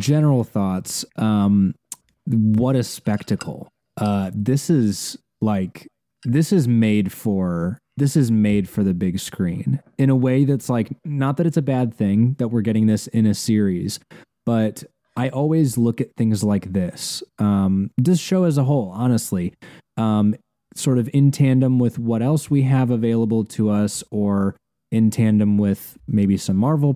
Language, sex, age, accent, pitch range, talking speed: English, male, 20-39, American, 105-135 Hz, 165 wpm